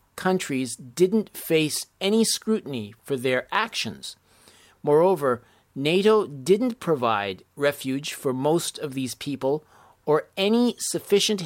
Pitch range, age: 130-185 Hz, 40-59